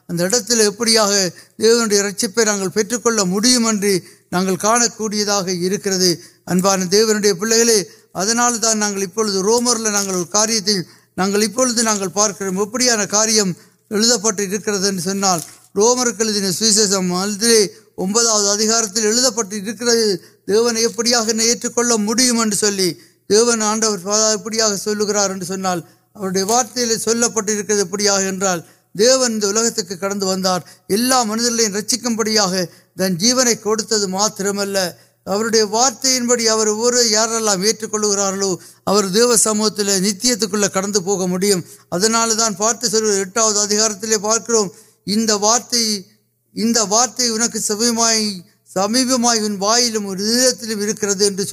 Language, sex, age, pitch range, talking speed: Urdu, male, 60-79, 195-230 Hz, 65 wpm